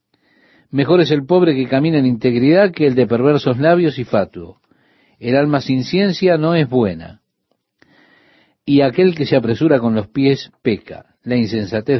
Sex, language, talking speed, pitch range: male, Spanish, 165 wpm, 115-155 Hz